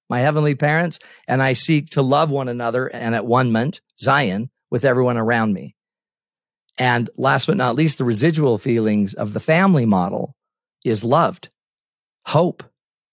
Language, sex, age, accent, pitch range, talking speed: English, male, 40-59, American, 120-155 Hz, 155 wpm